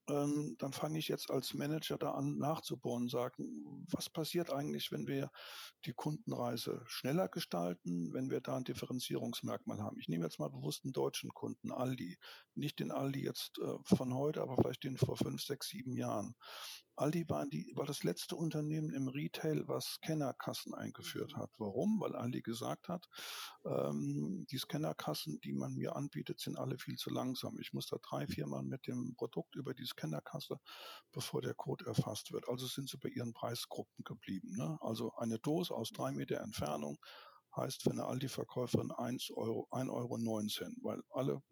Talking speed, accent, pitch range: 175 wpm, German, 110-165 Hz